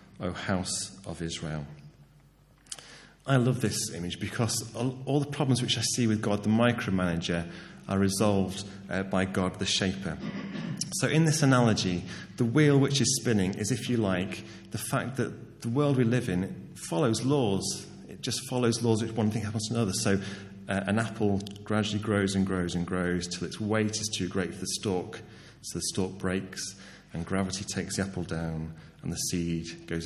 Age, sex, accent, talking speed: 30-49, male, British, 180 wpm